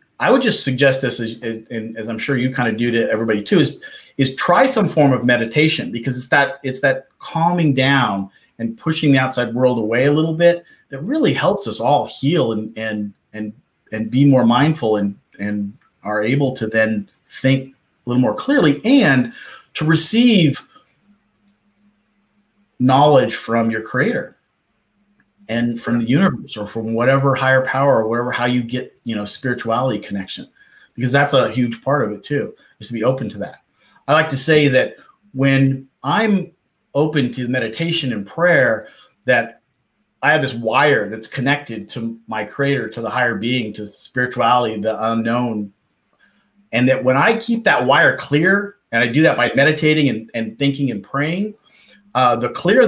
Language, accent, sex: English, American, male